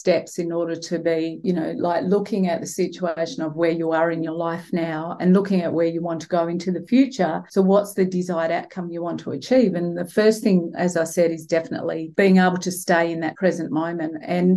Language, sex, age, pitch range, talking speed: English, female, 40-59, 165-185 Hz, 240 wpm